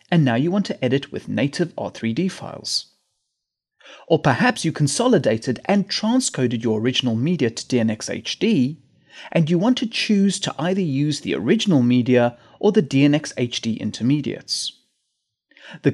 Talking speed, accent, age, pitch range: 140 wpm, British, 30-49, 125-200 Hz